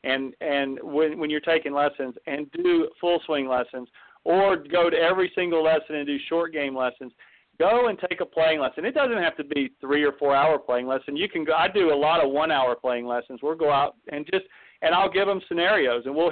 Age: 40-59